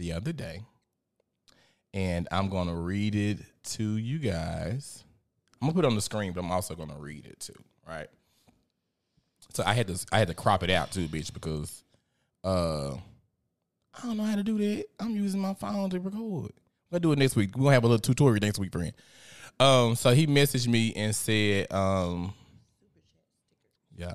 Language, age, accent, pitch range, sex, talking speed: English, 20-39, American, 90-120 Hz, male, 205 wpm